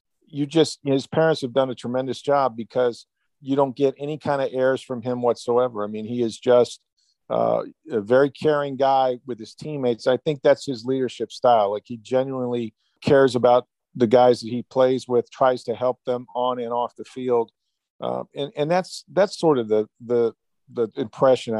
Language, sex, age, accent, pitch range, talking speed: English, male, 50-69, American, 120-140 Hz, 195 wpm